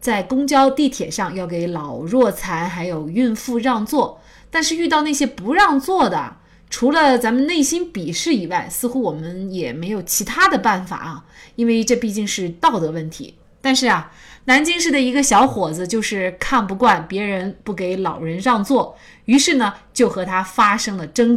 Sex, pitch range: female, 180-275 Hz